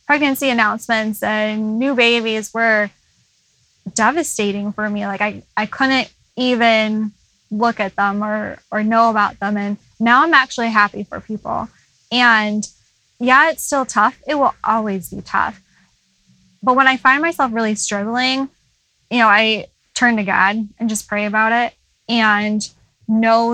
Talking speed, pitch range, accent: 150 wpm, 200-230 Hz, American